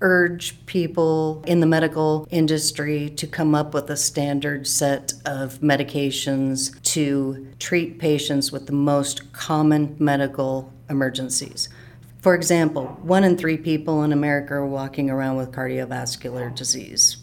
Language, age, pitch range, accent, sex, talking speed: English, 40-59, 130-150 Hz, American, female, 130 wpm